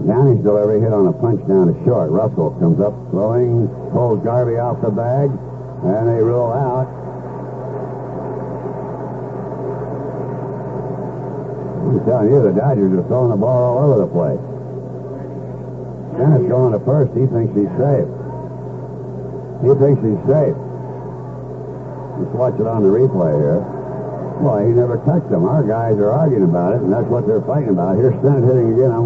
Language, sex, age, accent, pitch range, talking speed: English, male, 60-79, American, 115-135 Hz, 155 wpm